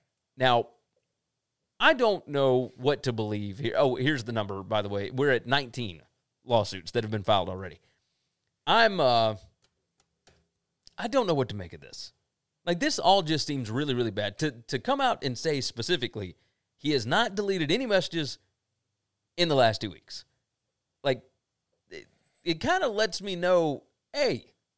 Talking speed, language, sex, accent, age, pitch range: 165 wpm, English, male, American, 30-49, 115-160 Hz